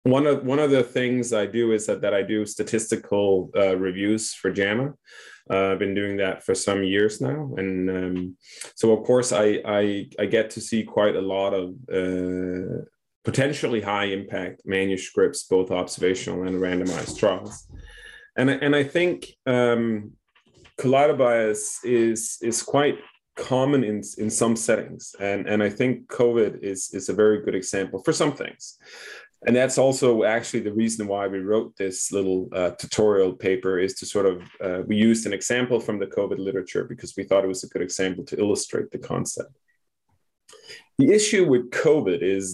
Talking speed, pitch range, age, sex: 175 wpm, 95-125 Hz, 20-39, male